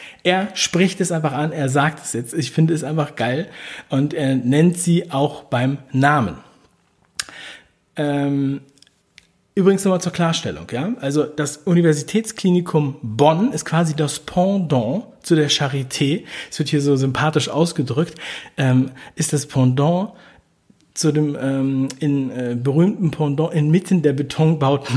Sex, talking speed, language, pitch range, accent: male, 130 wpm, German, 135-170 Hz, German